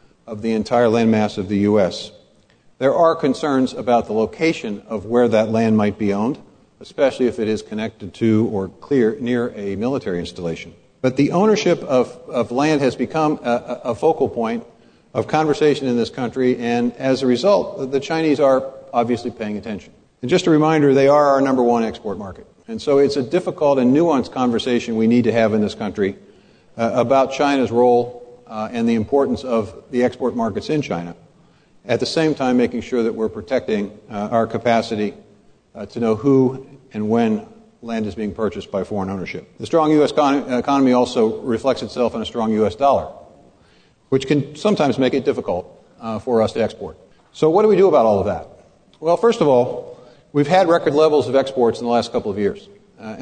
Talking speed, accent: 195 wpm, American